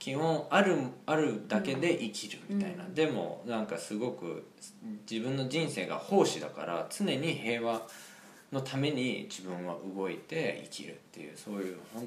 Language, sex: Japanese, male